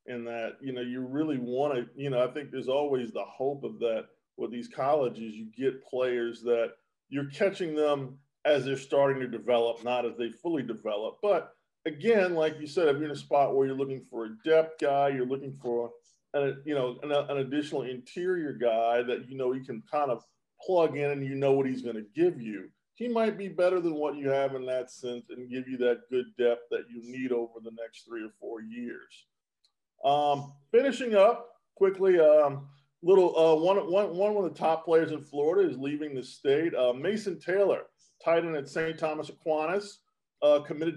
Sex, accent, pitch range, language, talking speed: male, American, 125-165 Hz, English, 205 wpm